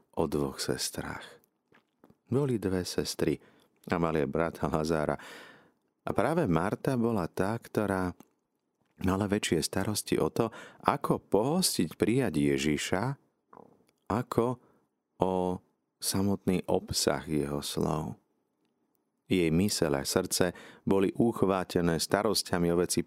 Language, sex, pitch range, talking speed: Slovak, male, 80-115 Hz, 100 wpm